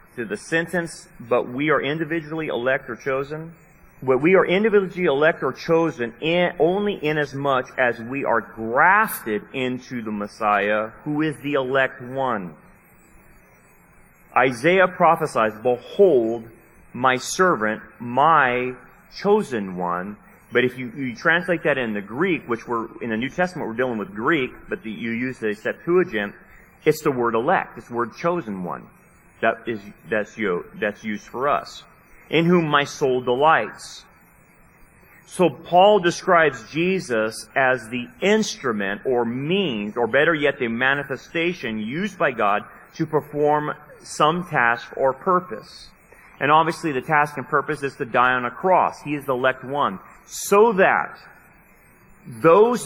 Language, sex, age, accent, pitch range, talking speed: English, male, 30-49, American, 120-170 Hz, 150 wpm